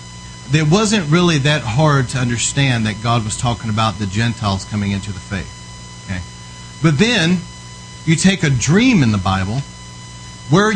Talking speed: 155 wpm